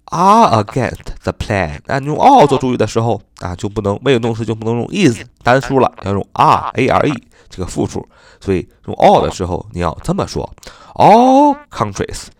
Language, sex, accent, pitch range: Chinese, male, native, 95-115 Hz